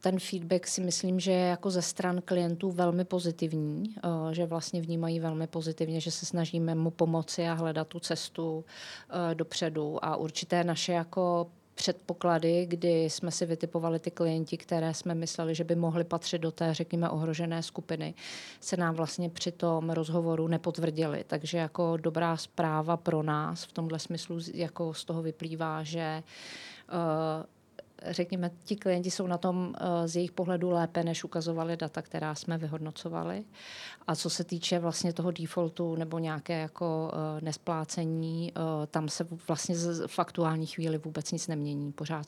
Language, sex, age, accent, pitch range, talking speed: Czech, female, 30-49, native, 160-175 Hz, 155 wpm